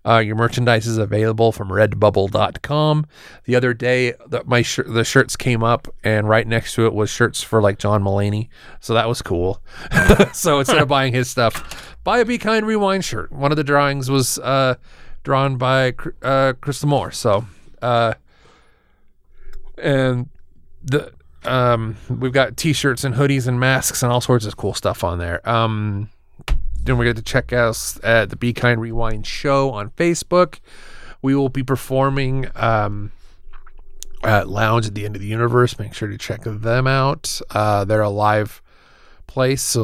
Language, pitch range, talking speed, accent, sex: English, 105-135 Hz, 170 wpm, American, male